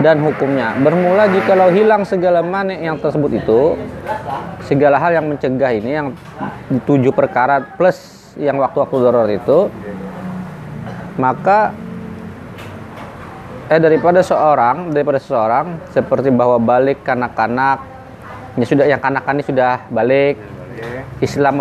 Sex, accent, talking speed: male, native, 115 wpm